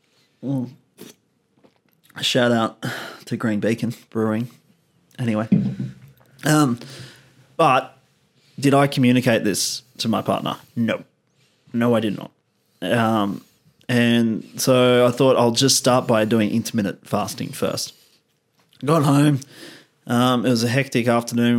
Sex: male